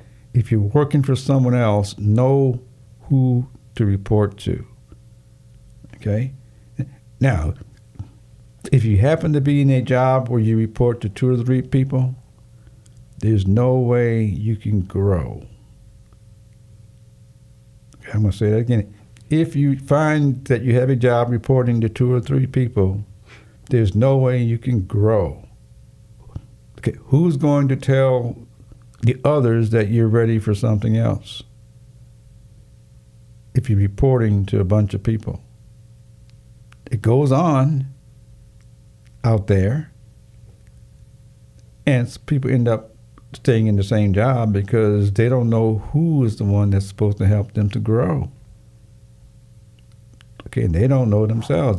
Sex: male